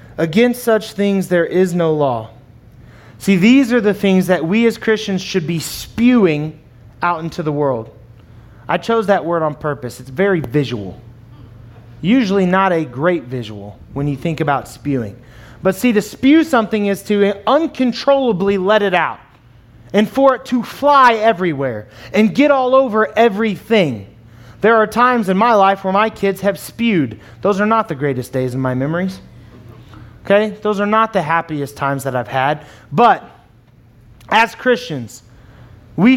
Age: 30-49